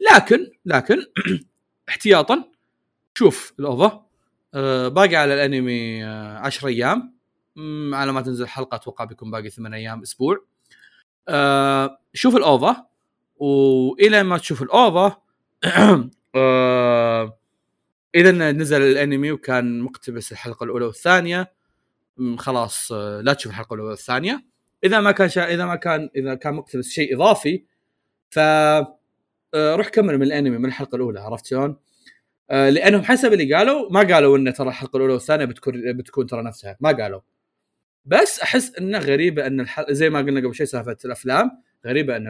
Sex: male